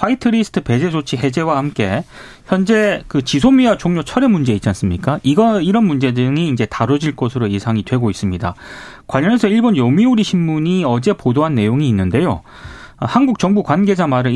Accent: native